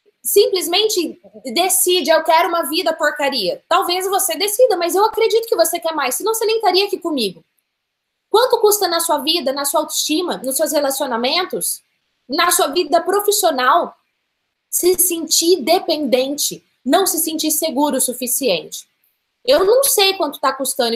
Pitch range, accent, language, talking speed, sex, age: 270-355 Hz, Brazilian, Portuguese, 150 wpm, female, 20-39